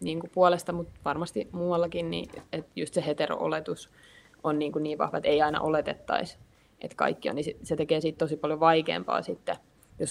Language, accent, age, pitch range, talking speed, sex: Finnish, native, 20-39, 150-175 Hz, 180 wpm, female